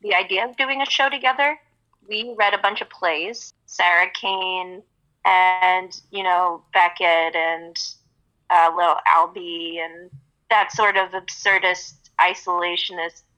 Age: 30-49